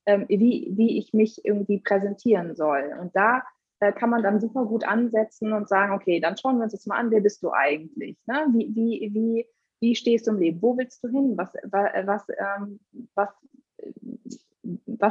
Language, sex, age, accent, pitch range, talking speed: German, female, 20-39, German, 190-235 Hz, 165 wpm